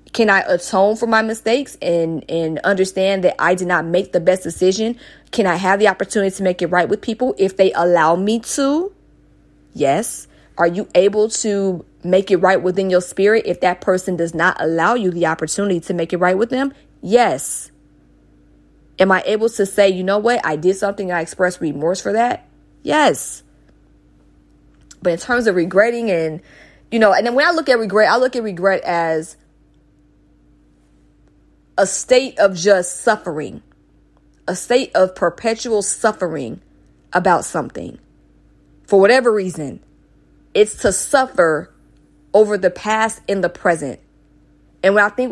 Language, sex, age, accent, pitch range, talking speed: English, female, 20-39, American, 175-220 Hz, 165 wpm